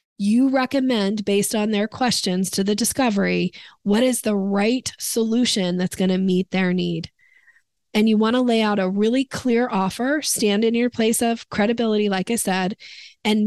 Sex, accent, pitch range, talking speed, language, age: female, American, 195-235 Hz, 180 wpm, English, 20-39